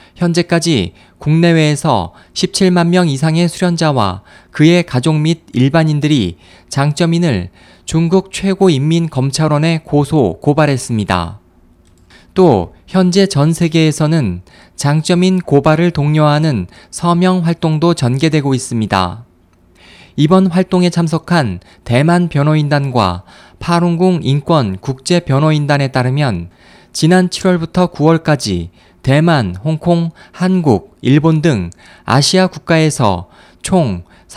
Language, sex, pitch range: Korean, male, 110-175 Hz